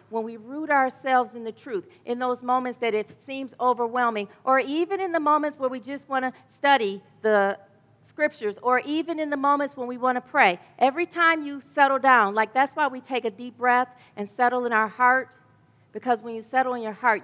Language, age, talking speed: English, 40-59, 215 wpm